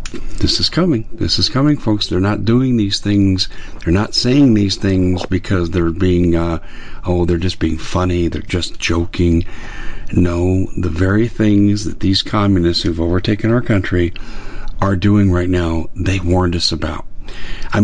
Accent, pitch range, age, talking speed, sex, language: American, 85-105 Hz, 50-69, 165 wpm, male, English